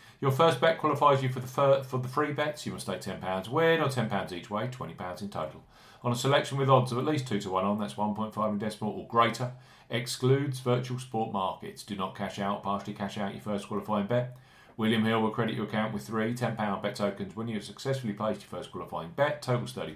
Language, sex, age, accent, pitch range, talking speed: English, male, 40-59, British, 105-135 Hz, 250 wpm